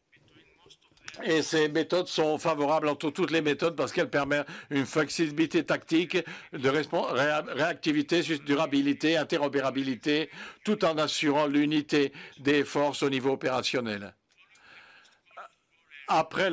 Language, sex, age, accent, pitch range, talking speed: French, male, 60-79, French, 140-160 Hz, 105 wpm